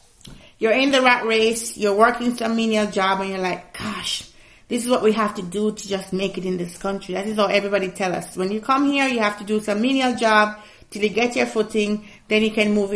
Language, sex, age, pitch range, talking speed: English, female, 30-49, 185-255 Hz, 250 wpm